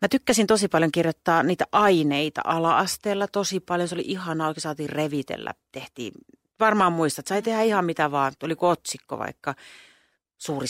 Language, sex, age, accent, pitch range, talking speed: Finnish, female, 40-59, native, 145-175 Hz, 165 wpm